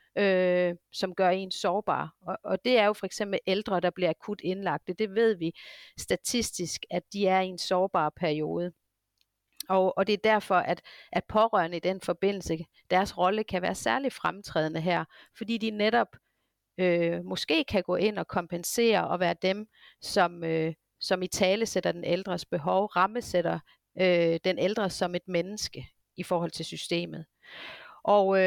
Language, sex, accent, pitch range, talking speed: Danish, female, native, 175-210 Hz, 165 wpm